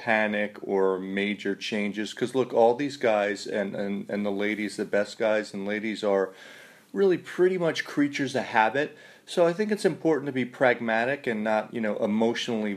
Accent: American